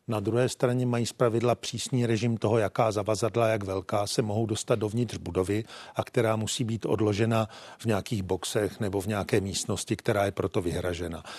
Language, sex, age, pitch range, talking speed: Czech, male, 40-59, 105-120 Hz, 175 wpm